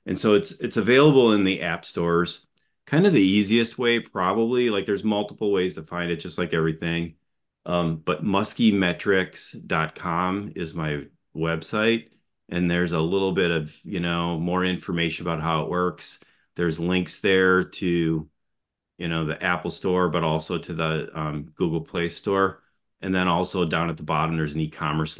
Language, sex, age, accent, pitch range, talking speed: English, male, 30-49, American, 80-95 Hz, 170 wpm